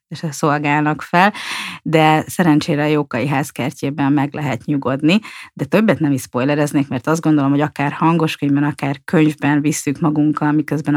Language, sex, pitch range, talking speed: Hungarian, female, 140-160 Hz, 150 wpm